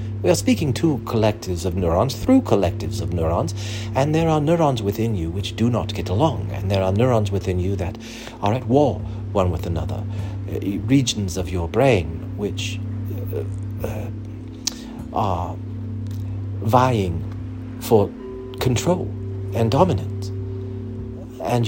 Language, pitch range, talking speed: English, 95-110 Hz, 140 wpm